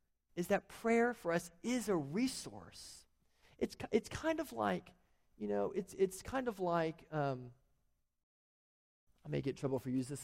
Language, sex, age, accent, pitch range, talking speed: English, male, 40-59, American, 140-230 Hz, 170 wpm